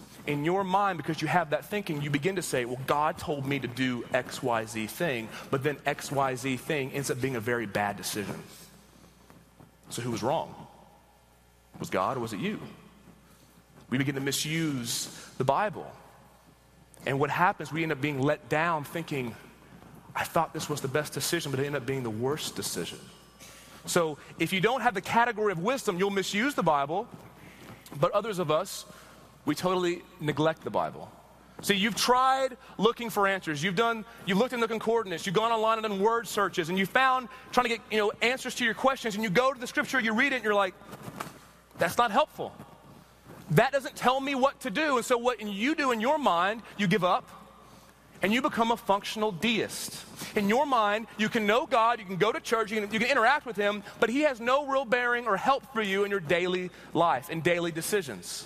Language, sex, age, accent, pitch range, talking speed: English, male, 30-49, American, 150-230 Hz, 210 wpm